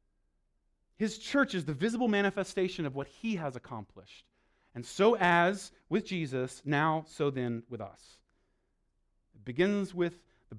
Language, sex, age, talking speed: English, male, 30-49, 140 wpm